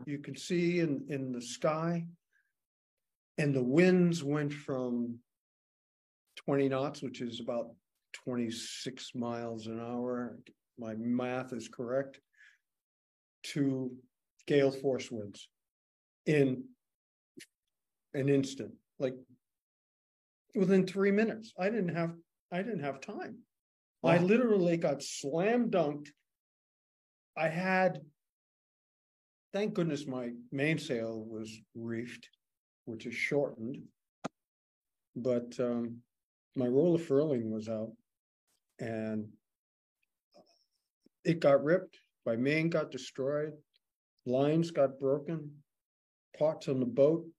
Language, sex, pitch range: English, male, 115-155 Hz